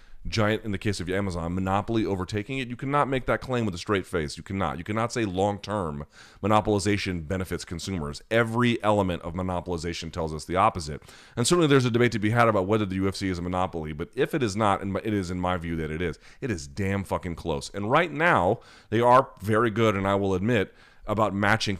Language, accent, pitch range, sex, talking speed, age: English, American, 90-120 Hz, male, 225 wpm, 30-49